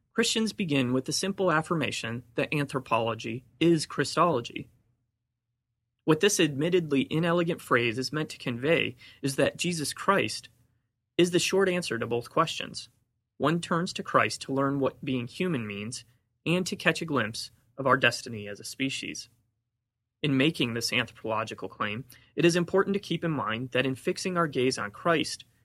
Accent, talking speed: American, 165 wpm